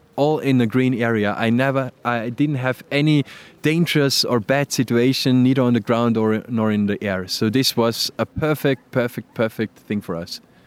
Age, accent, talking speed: 20-39, German, 190 wpm